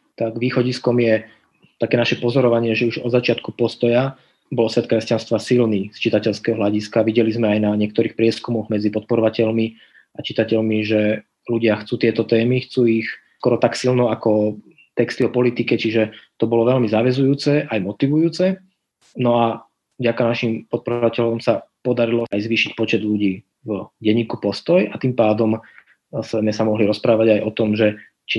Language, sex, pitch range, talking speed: Slovak, male, 110-120 Hz, 160 wpm